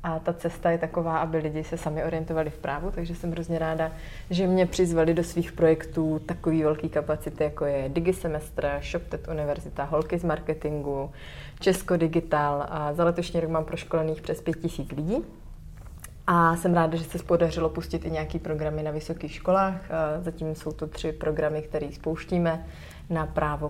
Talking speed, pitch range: 165 wpm, 150-170 Hz